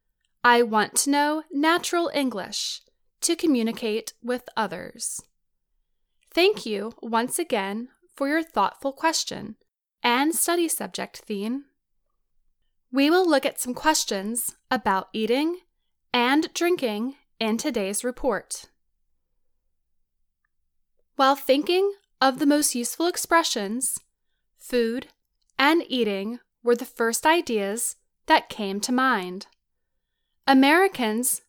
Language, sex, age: English, female, 10-29